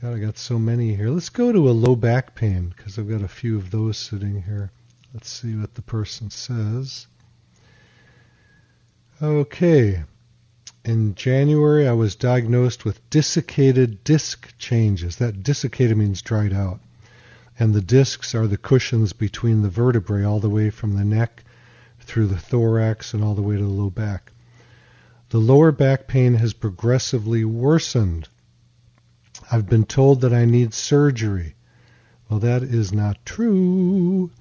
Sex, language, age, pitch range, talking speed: male, English, 40-59, 110-125 Hz, 155 wpm